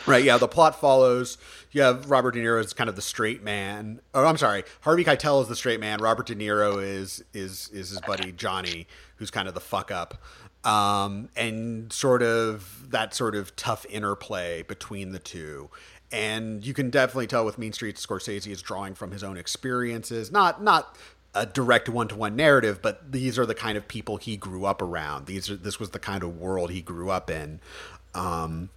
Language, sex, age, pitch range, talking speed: English, male, 40-59, 95-125 Hz, 200 wpm